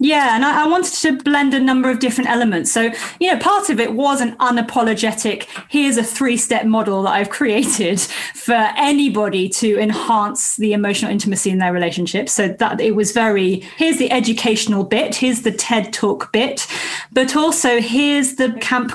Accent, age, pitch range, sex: British, 30-49, 210-255 Hz, female